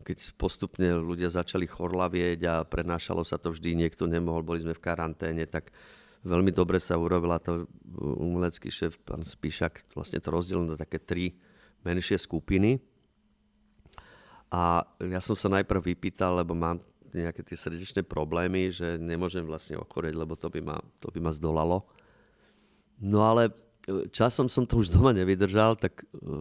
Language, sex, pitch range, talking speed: Slovak, male, 85-95 Hz, 150 wpm